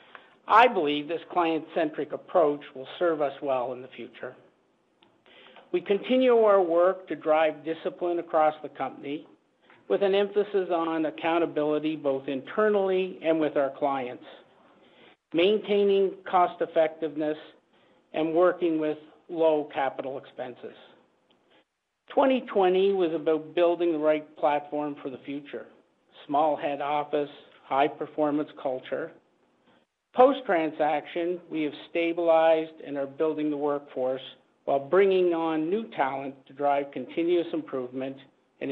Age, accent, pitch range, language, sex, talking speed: 50-69, American, 140-170 Hz, English, male, 115 wpm